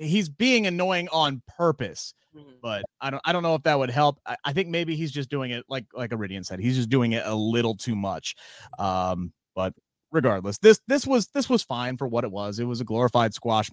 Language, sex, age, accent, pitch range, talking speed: English, male, 30-49, American, 110-160 Hz, 230 wpm